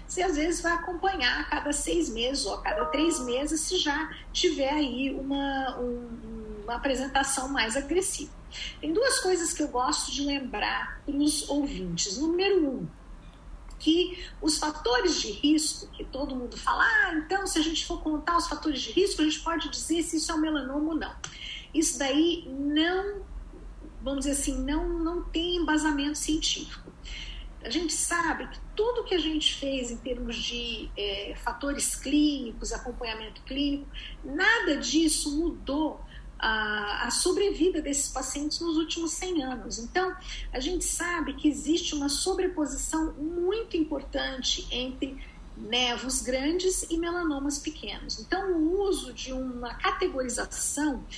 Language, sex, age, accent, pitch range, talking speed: Portuguese, female, 50-69, Brazilian, 260-335 Hz, 150 wpm